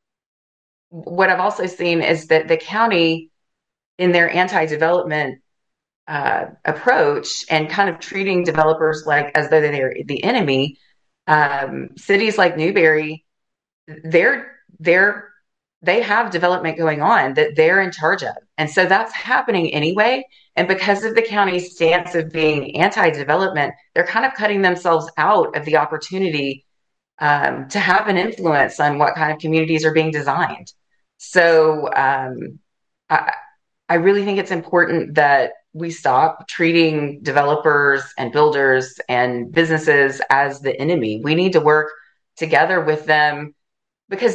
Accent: American